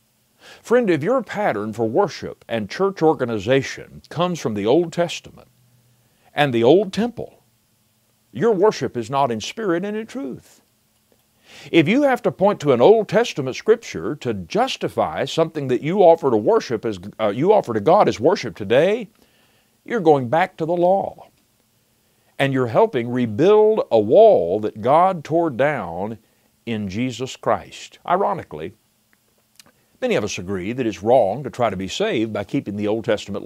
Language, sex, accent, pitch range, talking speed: English, male, American, 110-170 Hz, 165 wpm